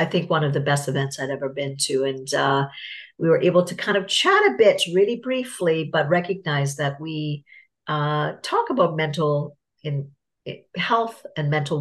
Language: English